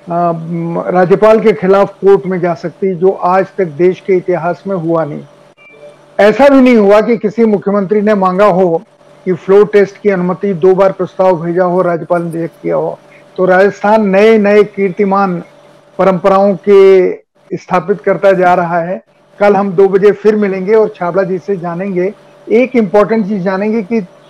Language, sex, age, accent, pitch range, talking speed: Hindi, male, 50-69, native, 185-210 Hz, 170 wpm